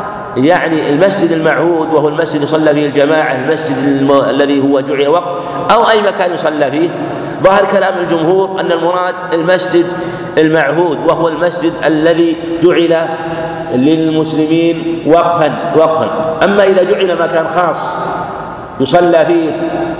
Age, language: 50-69, Arabic